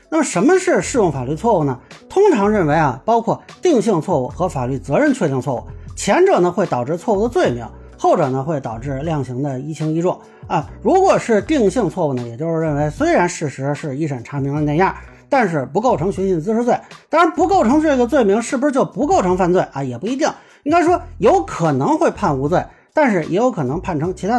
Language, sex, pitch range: Chinese, male, 145-210 Hz